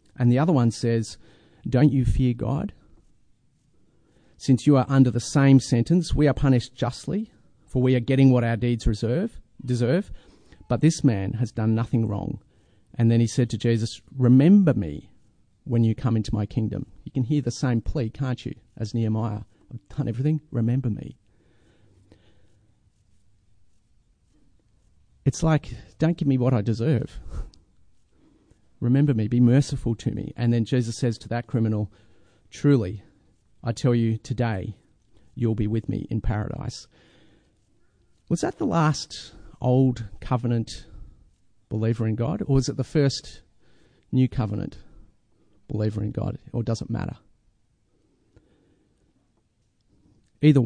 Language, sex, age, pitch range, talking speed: English, male, 40-59, 110-130 Hz, 140 wpm